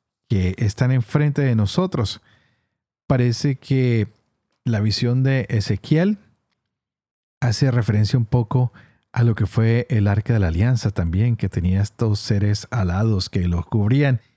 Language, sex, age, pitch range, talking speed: Spanish, male, 40-59, 105-125 Hz, 140 wpm